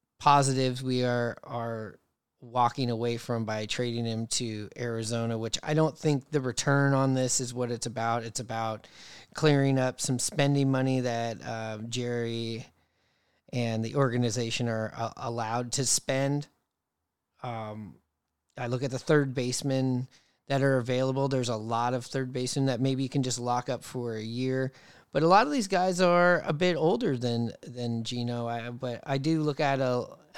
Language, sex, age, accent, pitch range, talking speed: English, male, 30-49, American, 120-140 Hz, 175 wpm